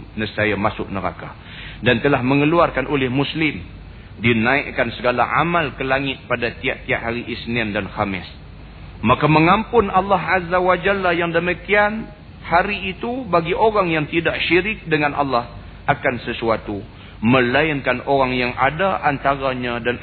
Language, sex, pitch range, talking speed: Malay, male, 110-155 Hz, 130 wpm